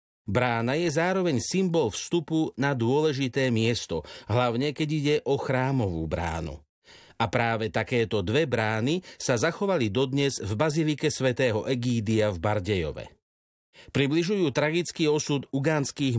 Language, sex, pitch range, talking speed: Slovak, male, 115-150 Hz, 120 wpm